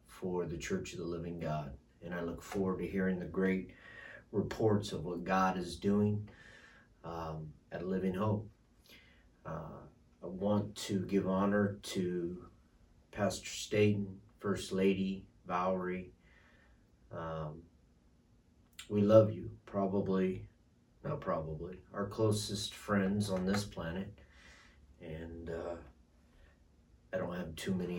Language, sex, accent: English, male, American